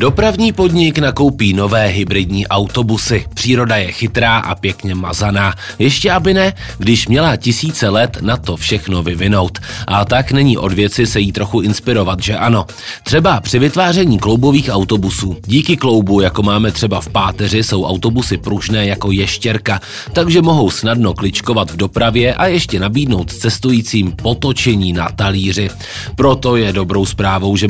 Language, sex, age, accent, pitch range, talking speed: Czech, male, 30-49, native, 100-120 Hz, 150 wpm